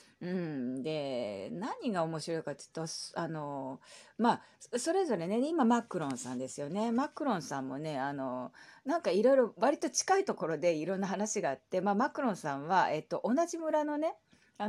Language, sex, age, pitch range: Japanese, female, 40-59, 155-235 Hz